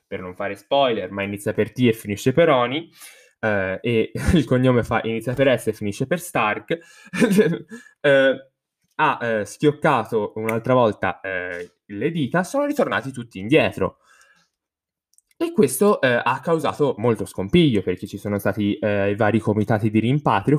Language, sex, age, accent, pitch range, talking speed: Italian, male, 10-29, native, 105-140 Hz, 155 wpm